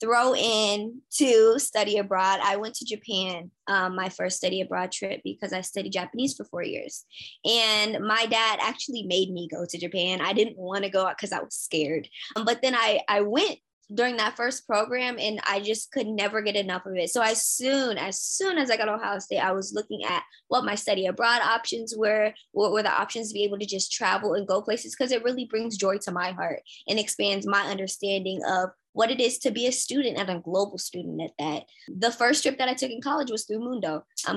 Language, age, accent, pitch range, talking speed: English, 20-39, American, 195-235 Hz, 230 wpm